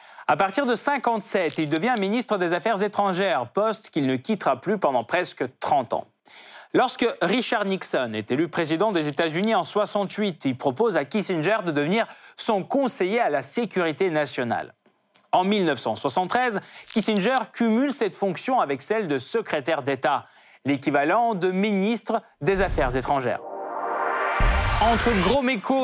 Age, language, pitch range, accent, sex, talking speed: 30-49, French, 160-220 Hz, French, male, 140 wpm